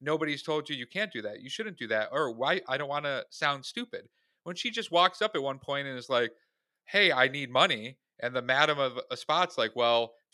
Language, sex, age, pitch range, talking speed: English, male, 40-59, 130-180 Hz, 250 wpm